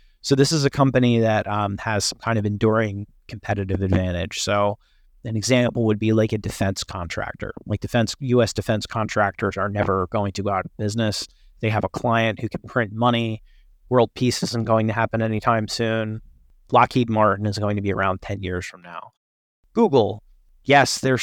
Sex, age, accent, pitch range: male, 30-49, American, 100-125 Hz